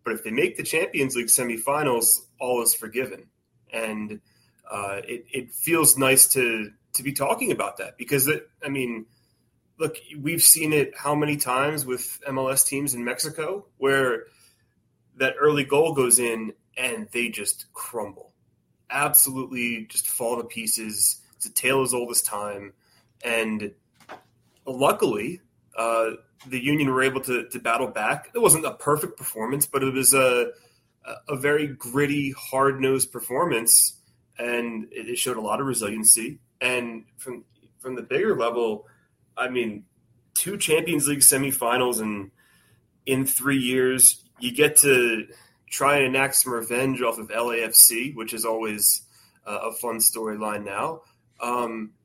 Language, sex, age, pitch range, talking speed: English, male, 30-49, 115-140 Hz, 150 wpm